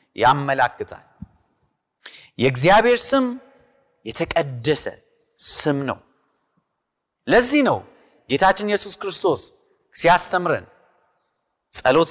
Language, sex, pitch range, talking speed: Amharic, male, 155-255 Hz, 65 wpm